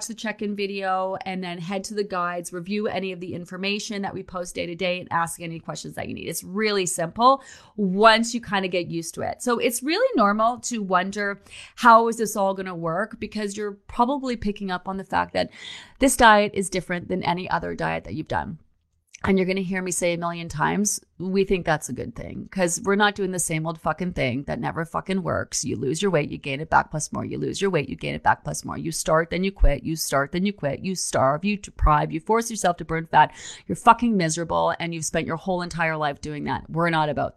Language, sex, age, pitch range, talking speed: English, female, 30-49, 170-230 Hz, 250 wpm